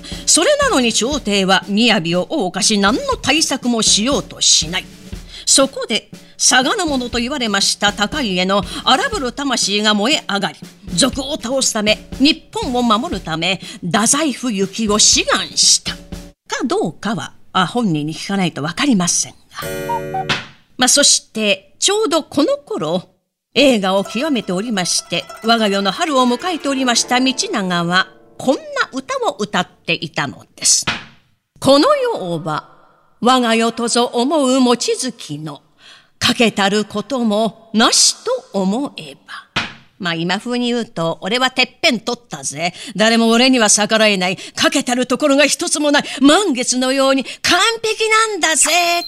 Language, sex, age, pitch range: Japanese, female, 40-59, 190-265 Hz